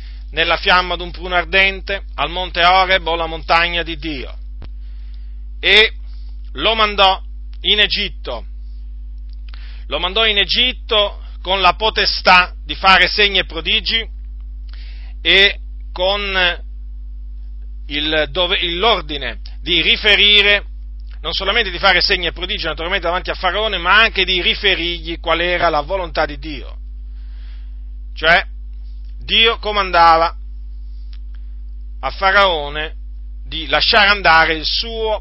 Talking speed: 115 wpm